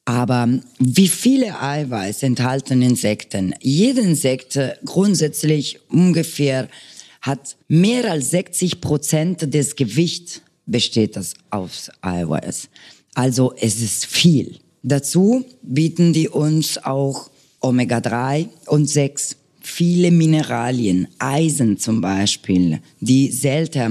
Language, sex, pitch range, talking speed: German, female, 120-160 Hz, 100 wpm